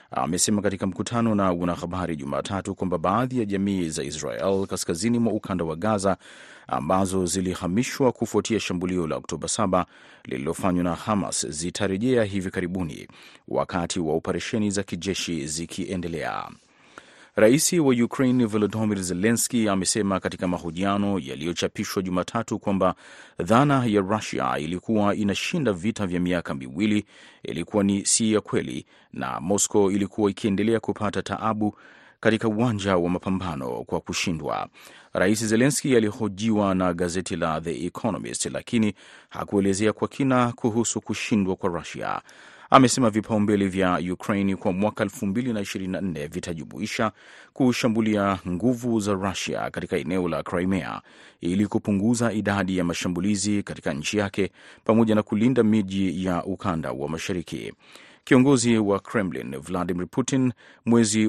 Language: Swahili